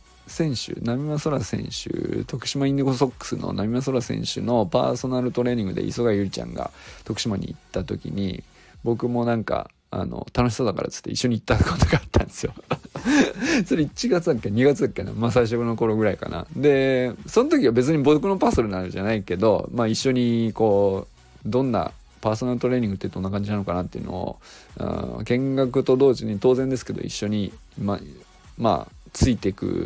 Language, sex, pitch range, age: Japanese, male, 95-130 Hz, 20-39